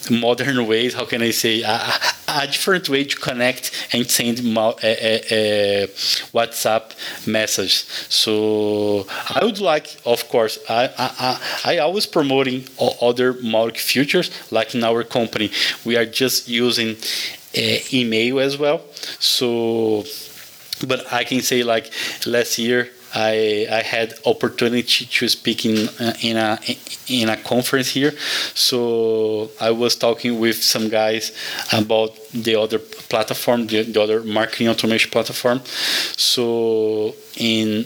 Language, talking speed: German, 140 wpm